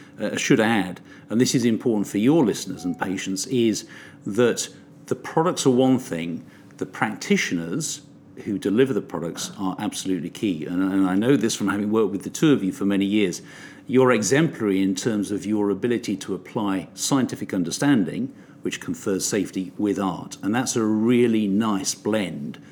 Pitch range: 95-125 Hz